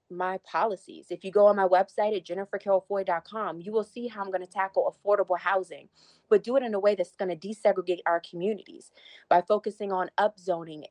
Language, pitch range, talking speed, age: English, 185-220 Hz, 200 wpm, 30-49